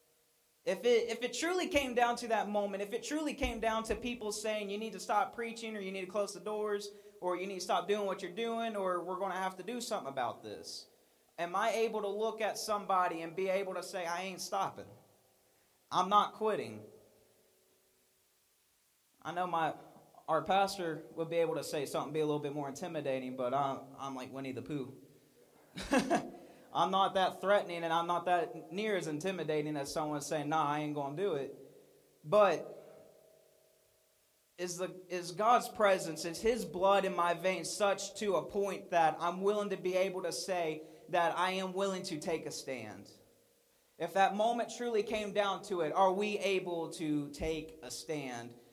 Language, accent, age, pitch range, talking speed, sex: English, American, 20-39, 165-210 Hz, 195 wpm, male